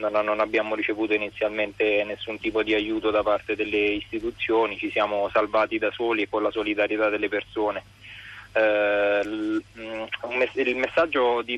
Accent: native